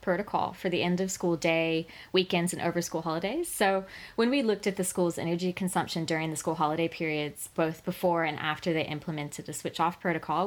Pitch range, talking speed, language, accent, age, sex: 155-185 Hz, 205 wpm, English, American, 20-39, female